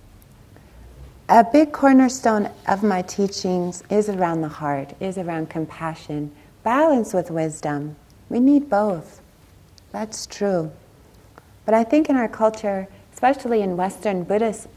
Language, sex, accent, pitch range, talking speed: English, female, American, 170-210 Hz, 125 wpm